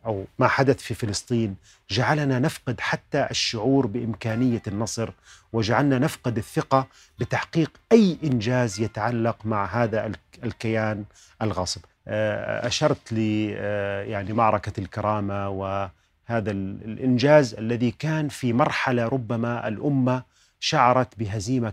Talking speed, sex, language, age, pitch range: 100 wpm, male, Arabic, 30-49, 105-130 Hz